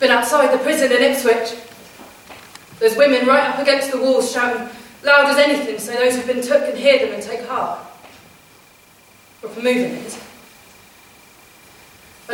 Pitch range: 230-285 Hz